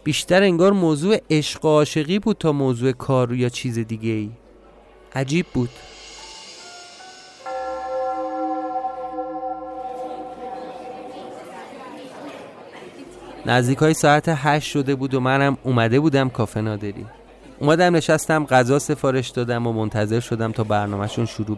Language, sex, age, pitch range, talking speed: Persian, male, 30-49, 115-155 Hz, 110 wpm